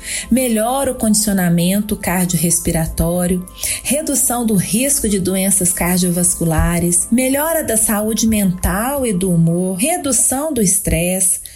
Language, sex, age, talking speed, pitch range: Portuguese, female, 30-49, 105 wpm, 180-260 Hz